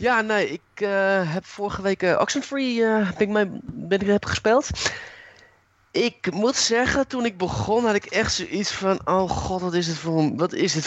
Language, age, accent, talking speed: Dutch, 20-39, Dutch, 200 wpm